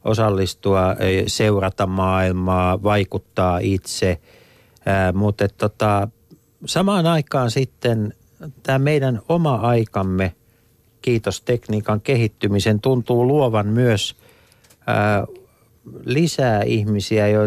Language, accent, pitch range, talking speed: Finnish, native, 95-120 Hz, 70 wpm